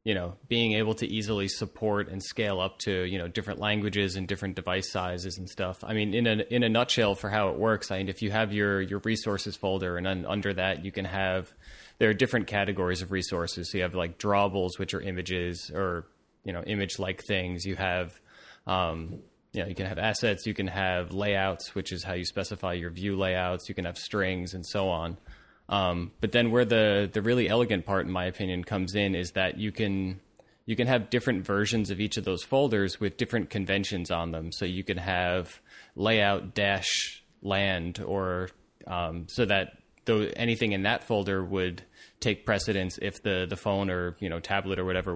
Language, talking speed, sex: English, 210 wpm, male